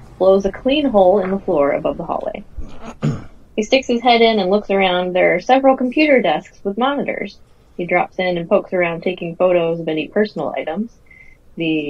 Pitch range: 170-225 Hz